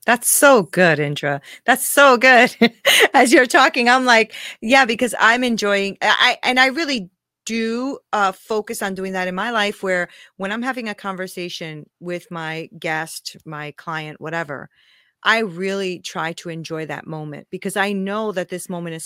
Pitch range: 175-215 Hz